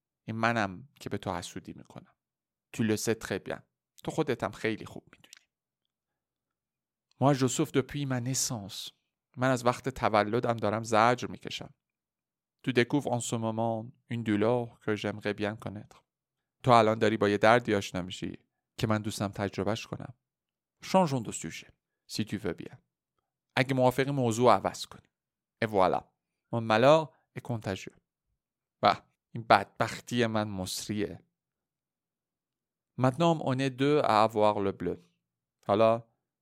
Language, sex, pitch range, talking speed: Persian, male, 105-135 Hz, 120 wpm